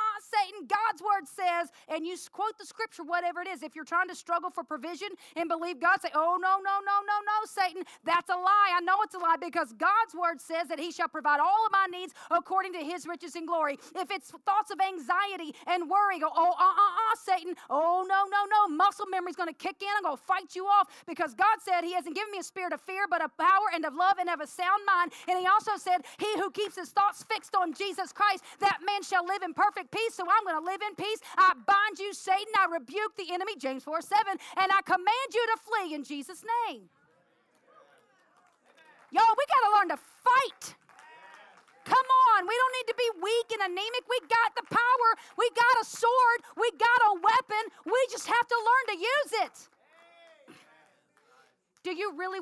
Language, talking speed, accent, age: English, 220 wpm, American, 40-59